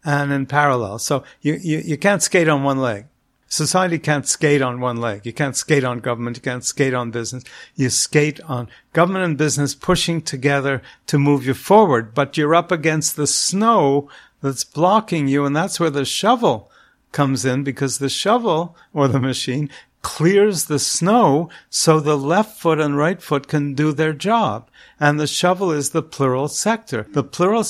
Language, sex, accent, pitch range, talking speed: English, male, American, 135-170 Hz, 185 wpm